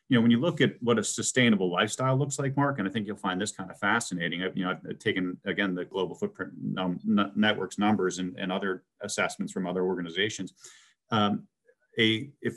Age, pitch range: 40-59, 95-115 Hz